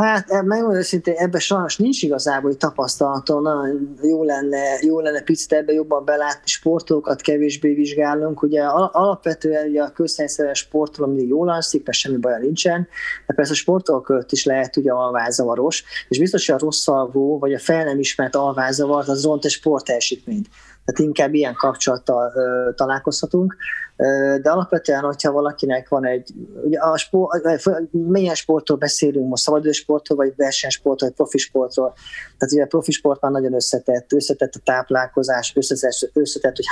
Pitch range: 135-160 Hz